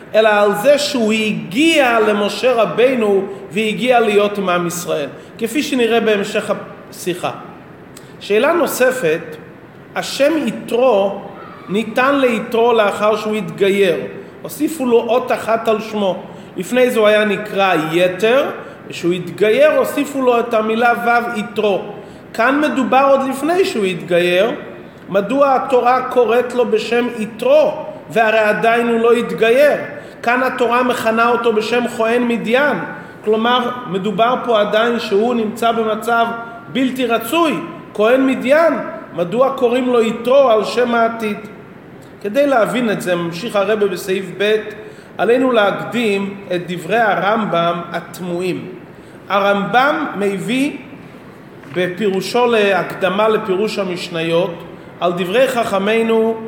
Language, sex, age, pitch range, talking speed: Hebrew, male, 30-49, 200-240 Hz, 115 wpm